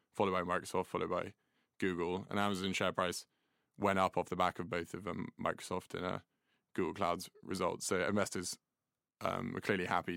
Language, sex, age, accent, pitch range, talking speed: English, male, 20-39, British, 90-100 Hz, 185 wpm